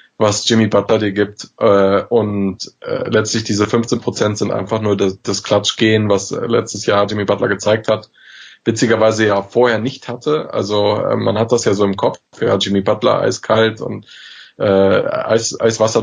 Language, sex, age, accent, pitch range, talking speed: German, male, 20-39, German, 105-115 Hz, 145 wpm